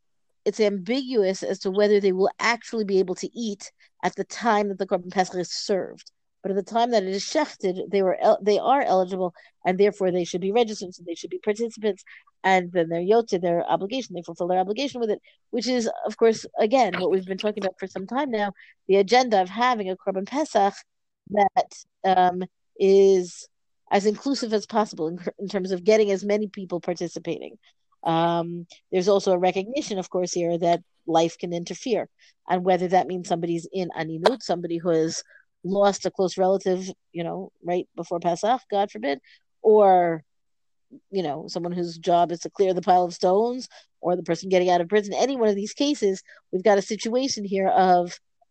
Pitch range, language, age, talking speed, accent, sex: 180-210 Hz, English, 50-69, 200 wpm, American, female